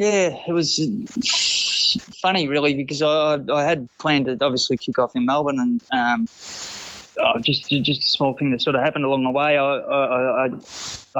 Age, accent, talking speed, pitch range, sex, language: 20-39, Australian, 180 wpm, 120-150 Hz, male, English